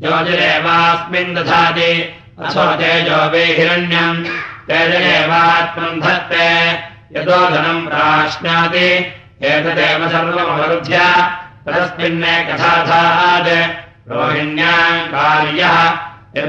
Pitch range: 165-170 Hz